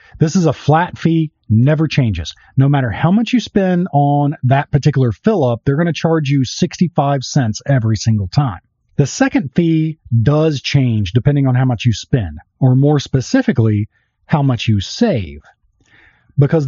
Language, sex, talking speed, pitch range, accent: English, male, 160 wpm, 120-160 Hz, American